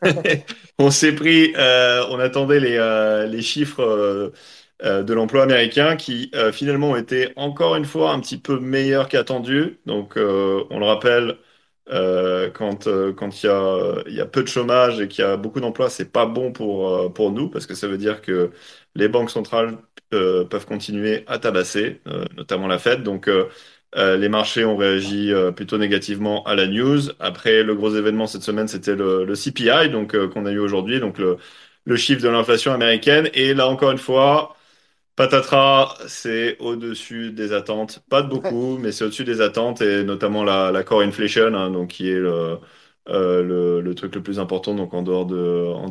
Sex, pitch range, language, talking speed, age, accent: male, 95-125 Hz, French, 200 wpm, 30-49, French